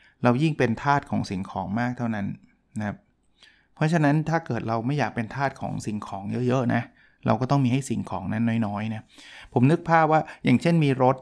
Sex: male